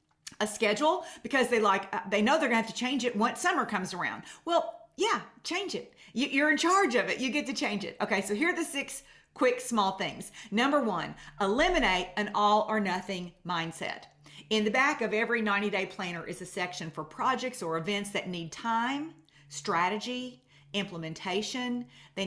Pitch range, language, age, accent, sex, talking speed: 185-250 Hz, English, 40-59, American, female, 185 wpm